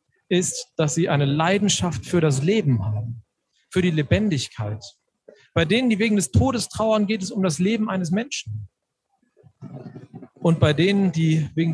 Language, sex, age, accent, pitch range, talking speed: German, male, 40-59, German, 140-195 Hz, 160 wpm